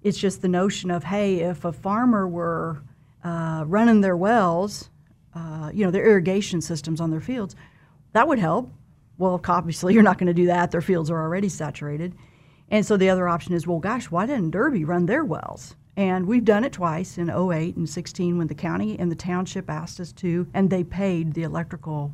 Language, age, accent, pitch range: English, 50-69, American, 160-195 Hz